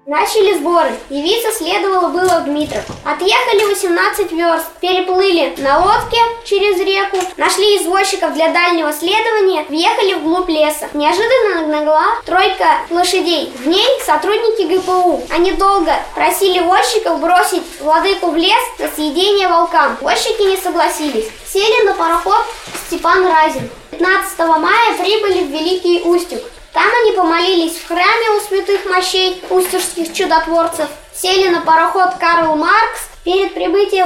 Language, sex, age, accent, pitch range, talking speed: Russian, female, 20-39, native, 330-400 Hz, 130 wpm